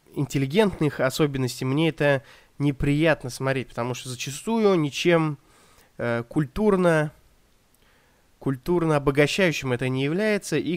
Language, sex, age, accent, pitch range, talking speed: Russian, male, 20-39, native, 130-180 Hz, 100 wpm